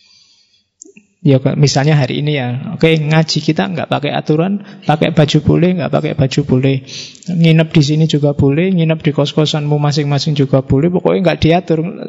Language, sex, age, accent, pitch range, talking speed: Indonesian, male, 20-39, native, 135-160 Hz, 165 wpm